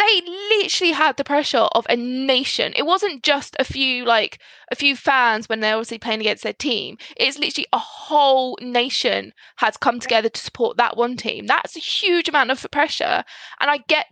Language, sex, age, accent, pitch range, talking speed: English, female, 20-39, British, 230-295 Hz, 195 wpm